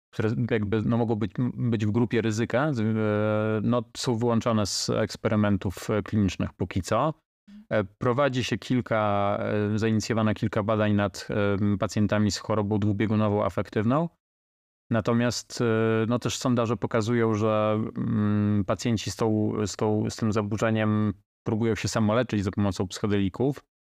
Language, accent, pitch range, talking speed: Polish, native, 105-115 Hz, 120 wpm